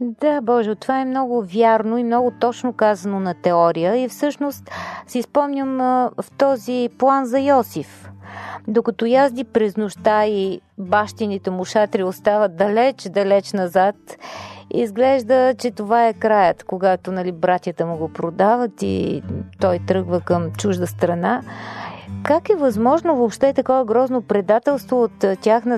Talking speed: 135 wpm